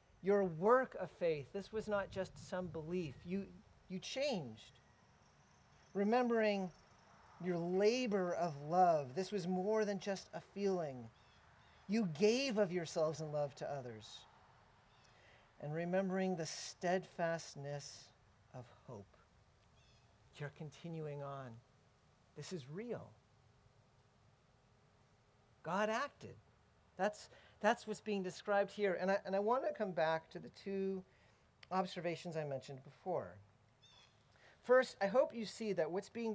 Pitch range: 140-210 Hz